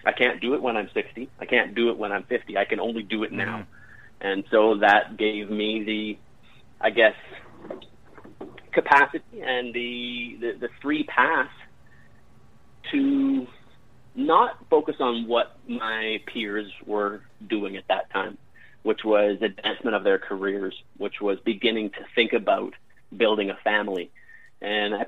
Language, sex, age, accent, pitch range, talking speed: English, male, 30-49, American, 105-120 Hz, 155 wpm